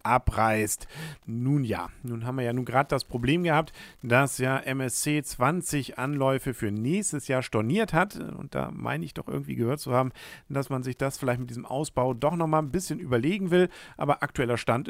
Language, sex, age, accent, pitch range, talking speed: German, male, 50-69, German, 110-145 Hz, 195 wpm